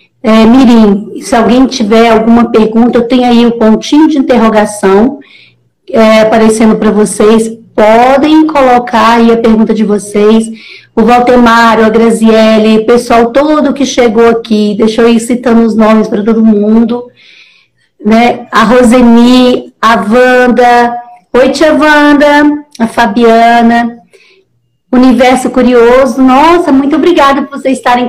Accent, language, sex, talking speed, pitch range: Brazilian, Portuguese, female, 135 wpm, 220-255 Hz